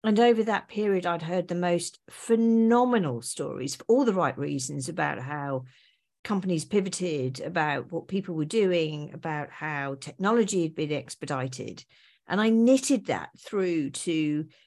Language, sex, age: English, female, 50-69